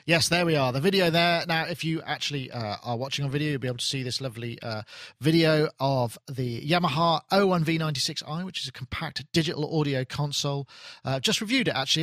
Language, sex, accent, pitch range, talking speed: English, male, British, 125-160 Hz, 205 wpm